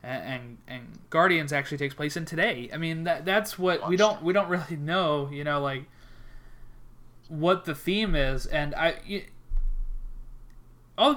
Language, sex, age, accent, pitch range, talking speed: English, male, 20-39, American, 130-170 Hz, 160 wpm